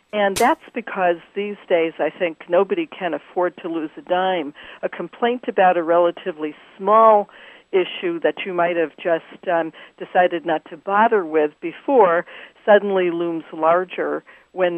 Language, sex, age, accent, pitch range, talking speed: English, female, 50-69, American, 170-205 Hz, 150 wpm